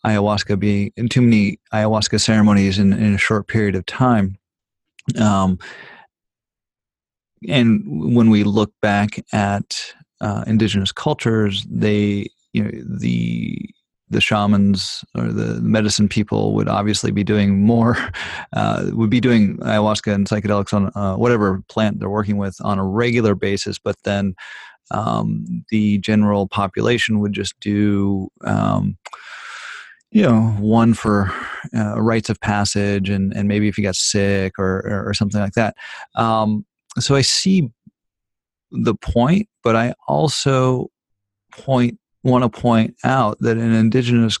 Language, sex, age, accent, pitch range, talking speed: English, male, 30-49, American, 100-115 Hz, 140 wpm